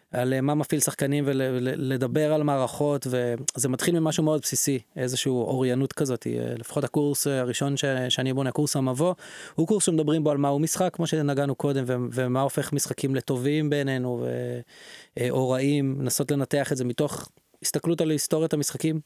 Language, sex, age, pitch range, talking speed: Hebrew, male, 20-39, 130-155 Hz, 165 wpm